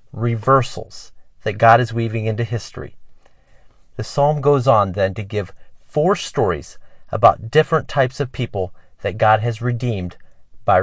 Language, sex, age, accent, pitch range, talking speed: English, male, 40-59, American, 105-135 Hz, 145 wpm